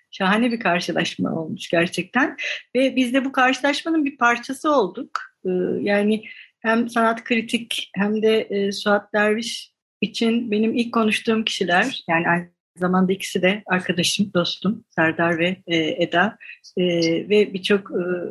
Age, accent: 60-79, native